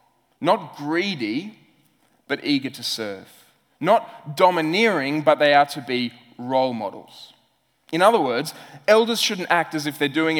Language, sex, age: English, male, 20-39